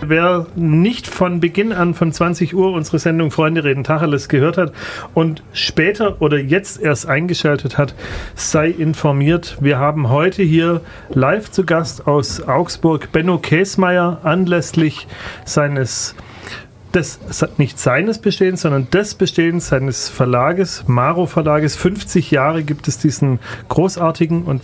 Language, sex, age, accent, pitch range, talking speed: German, male, 40-59, German, 130-165 Hz, 130 wpm